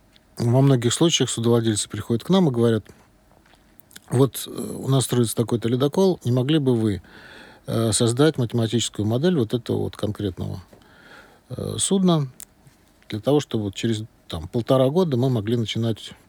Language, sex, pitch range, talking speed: Russian, male, 100-125 Hz, 140 wpm